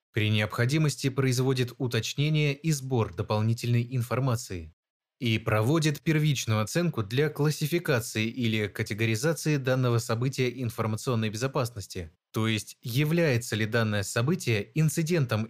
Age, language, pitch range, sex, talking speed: 20-39, Russian, 110-145 Hz, male, 105 wpm